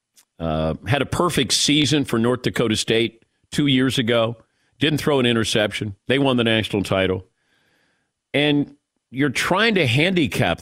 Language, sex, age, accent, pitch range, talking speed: English, male, 50-69, American, 110-150 Hz, 145 wpm